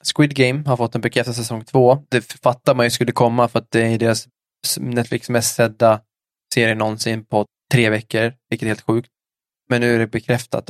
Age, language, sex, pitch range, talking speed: 20-39, Swedish, male, 110-125 Hz, 200 wpm